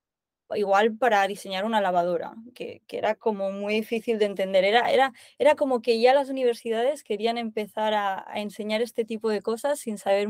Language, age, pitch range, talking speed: Spanish, 20-39, 185-220 Hz, 185 wpm